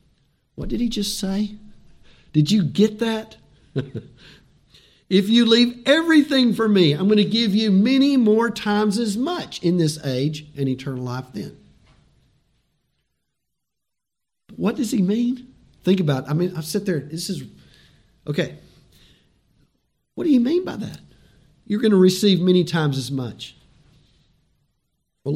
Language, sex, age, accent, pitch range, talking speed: English, male, 50-69, American, 130-195 Hz, 150 wpm